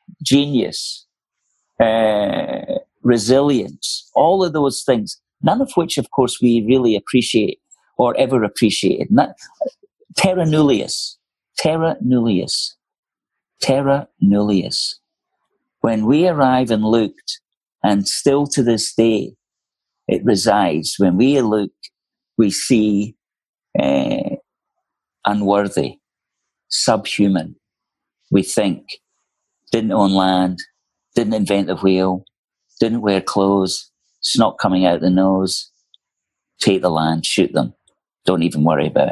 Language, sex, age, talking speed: English, male, 50-69, 110 wpm